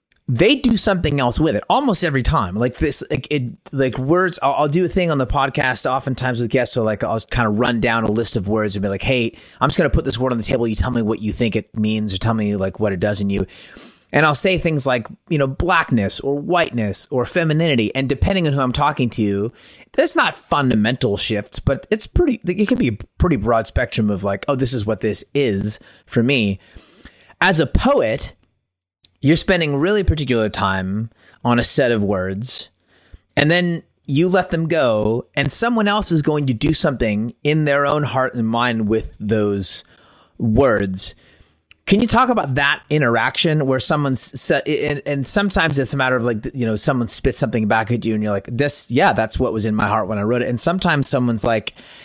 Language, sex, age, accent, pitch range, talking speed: English, male, 30-49, American, 110-150 Hz, 220 wpm